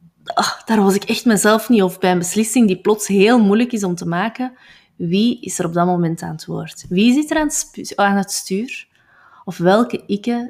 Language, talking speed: Dutch, 230 wpm